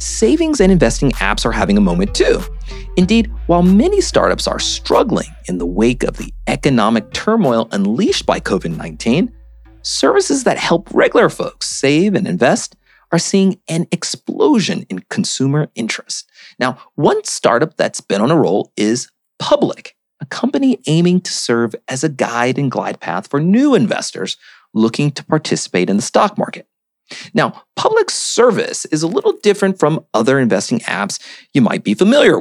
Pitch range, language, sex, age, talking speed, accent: 135-205 Hz, English, male, 40-59, 160 wpm, American